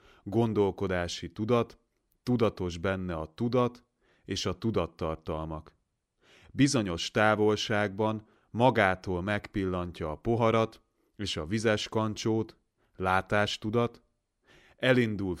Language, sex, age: Hungarian, male, 30-49